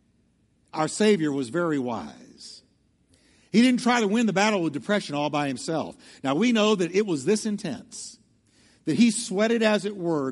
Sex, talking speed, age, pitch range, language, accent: male, 180 wpm, 60-79, 135-190 Hz, English, American